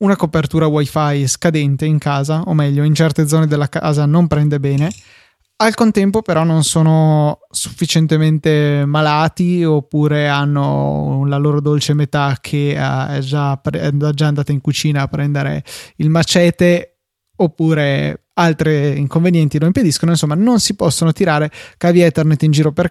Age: 20-39